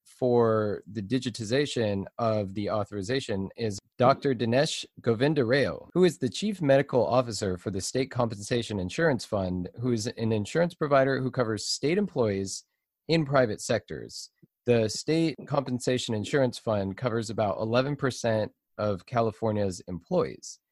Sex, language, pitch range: male, English, 105-135 Hz